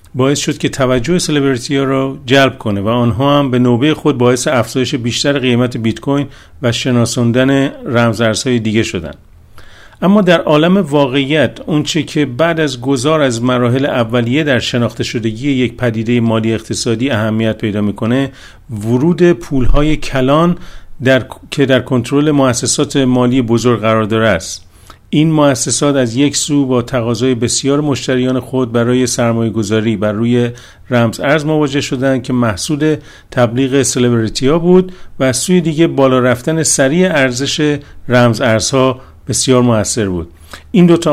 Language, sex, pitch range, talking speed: Persian, male, 120-145 Hz, 145 wpm